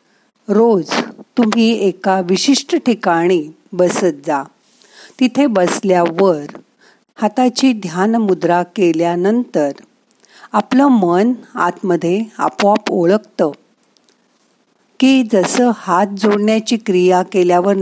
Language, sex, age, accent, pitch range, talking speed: Marathi, female, 50-69, native, 170-225 Hz, 80 wpm